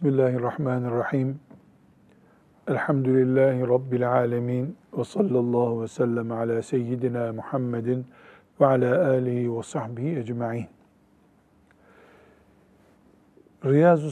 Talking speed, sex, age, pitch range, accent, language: 80 wpm, male, 50-69, 125-150 Hz, native, Turkish